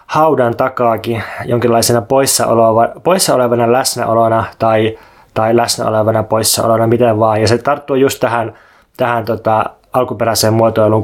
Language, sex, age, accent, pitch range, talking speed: Finnish, male, 20-39, native, 110-130 Hz, 115 wpm